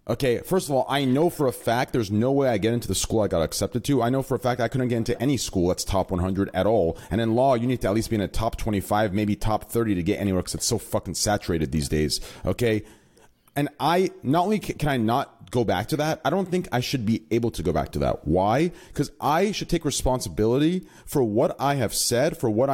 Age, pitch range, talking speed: 30-49, 115-180 Hz, 265 wpm